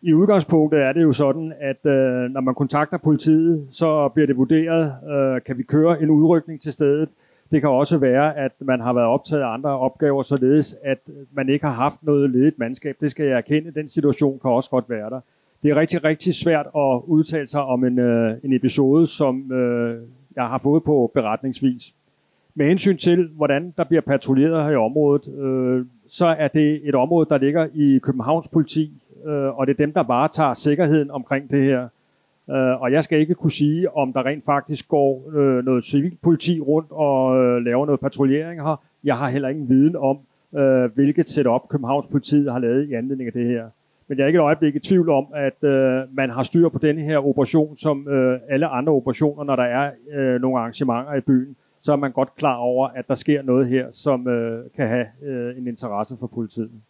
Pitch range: 130-155 Hz